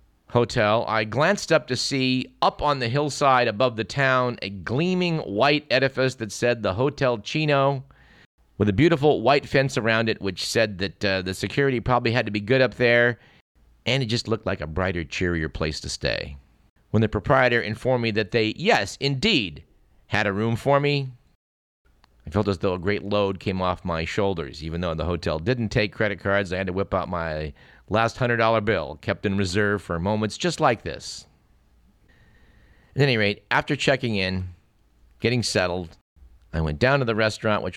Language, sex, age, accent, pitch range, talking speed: English, male, 50-69, American, 95-130 Hz, 185 wpm